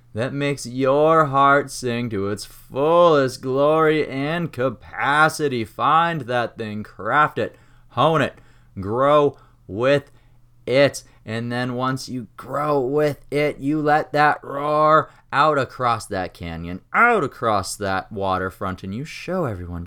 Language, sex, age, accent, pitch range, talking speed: English, male, 30-49, American, 105-140 Hz, 135 wpm